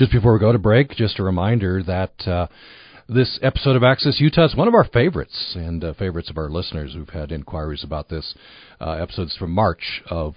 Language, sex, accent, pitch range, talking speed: English, male, American, 85-120 Hz, 215 wpm